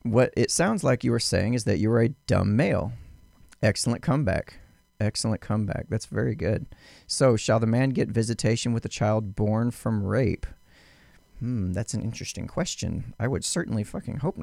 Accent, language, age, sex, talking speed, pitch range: American, English, 30-49, male, 180 wpm, 95-115 Hz